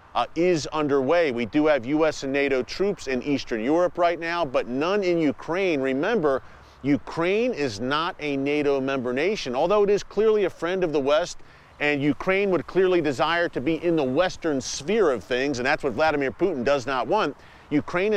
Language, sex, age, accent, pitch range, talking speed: English, male, 40-59, American, 140-175 Hz, 190 wpm